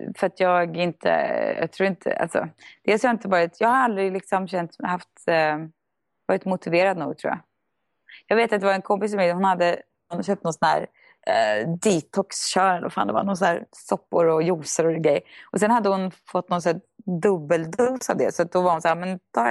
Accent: Swedish